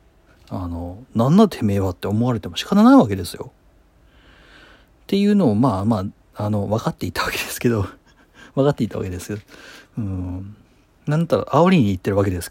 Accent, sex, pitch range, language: native, male, 100-160 Hz, Japanese